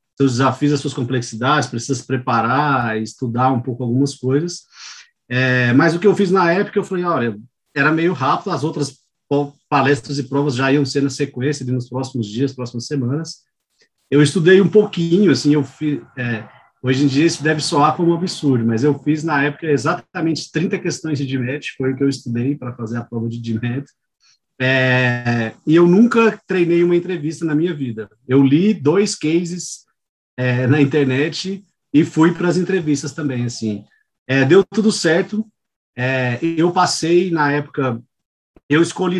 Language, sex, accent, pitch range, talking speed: Portuguese, male, Brazilian, 130-165 Hz, 175 wpm